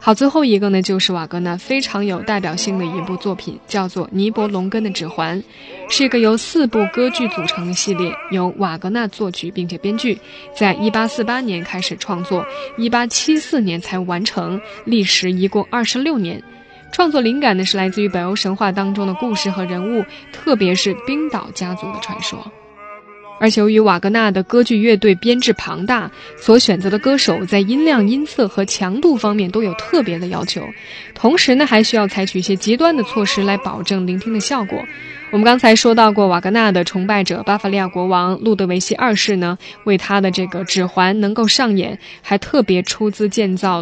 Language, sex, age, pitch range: Chinese, female, 10-29, 185-230 Hz